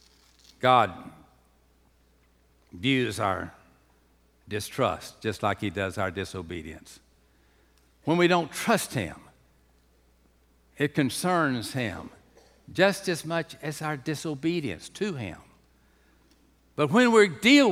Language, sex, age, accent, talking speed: English, male, 60-79, American, 100 wpm